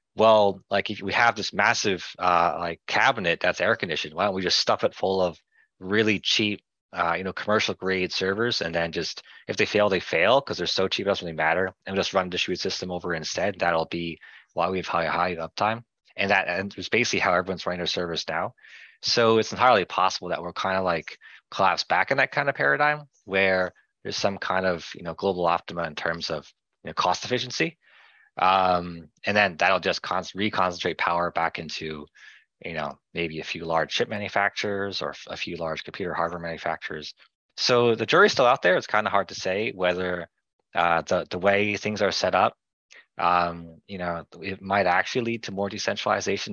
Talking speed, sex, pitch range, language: 210 wpm, male, 85-100 Hz, English